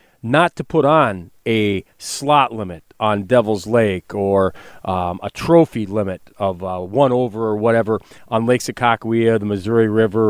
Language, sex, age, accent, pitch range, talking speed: English, male, 40-59, American, 110-140 Hz, 155 wpm